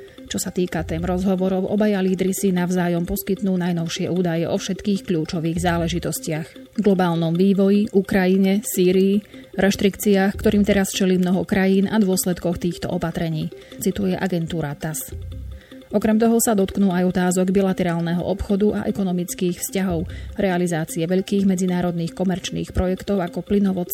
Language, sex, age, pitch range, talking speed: Slovak, female, 30-49, 175-200 Hz, 130 wpm